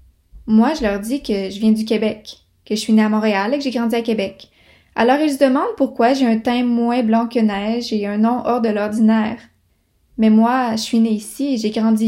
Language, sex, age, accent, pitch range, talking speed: French, female, 20-39, Canadian, 215-265 Hz, 240 wpm